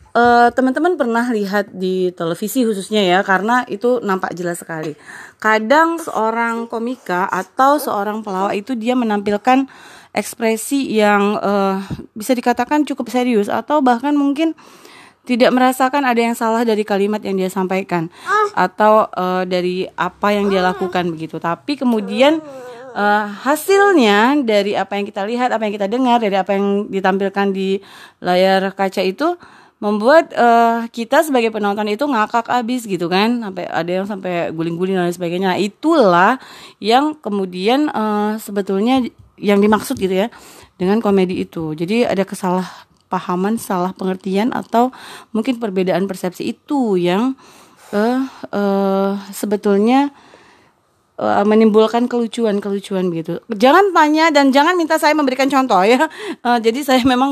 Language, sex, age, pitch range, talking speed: Indonesian, female, 30-49, 195-255 Hz, 140 wpm